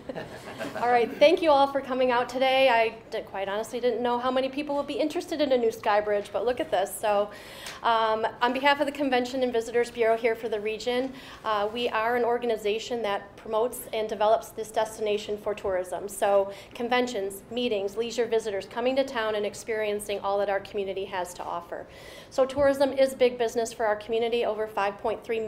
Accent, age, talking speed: American, 30-49, 200 wpm